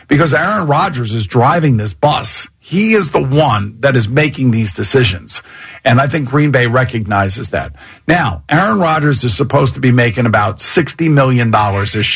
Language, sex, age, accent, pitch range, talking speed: English, male, 50-69, American, 115-150 Hz, 175 wpm